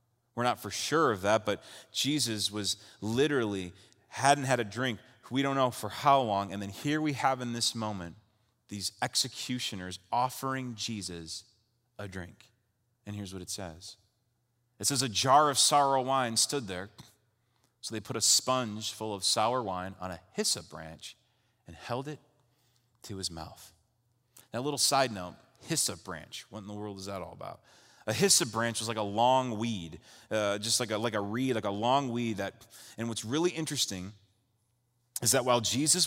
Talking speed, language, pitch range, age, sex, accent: 185 wpm, English, 105-135 Hz, 30-49, male, American